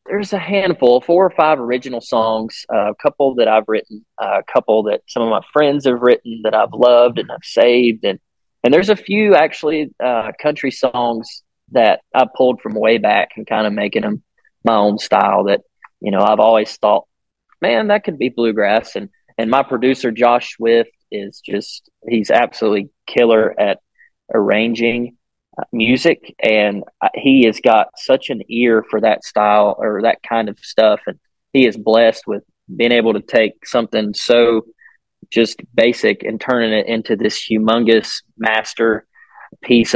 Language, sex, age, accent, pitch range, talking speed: English, male, 20-39, American, 110-125 Hz, 170 wpm